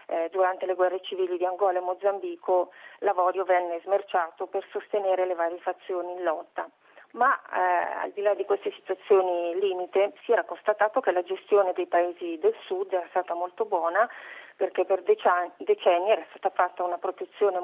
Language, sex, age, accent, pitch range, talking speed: Italian, female, 40-59, native, 175-210 Hz, 165 wpm